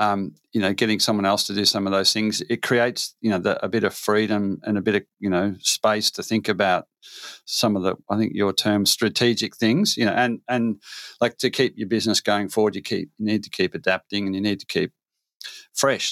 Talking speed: 240 wpm